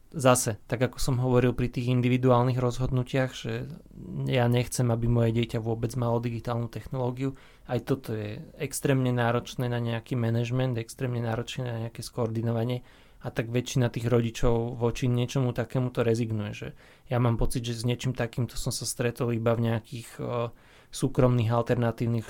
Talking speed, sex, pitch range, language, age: 160 wpm, male, 115-130 Hz, Slovak, 20-39